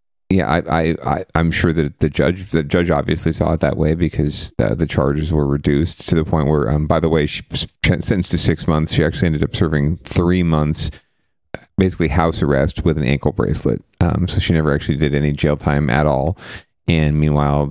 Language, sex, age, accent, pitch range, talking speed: English, male, 40-59, American, 75-85 Hz, 215 wpm